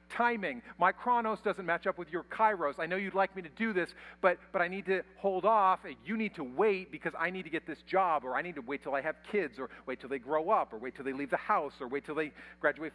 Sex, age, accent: male, 40-59, American